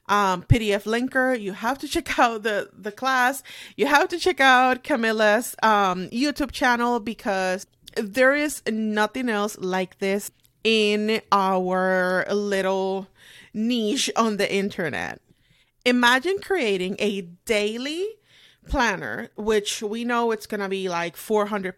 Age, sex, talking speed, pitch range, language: 30-49, female, 130 wpm, 200-255 Hz, English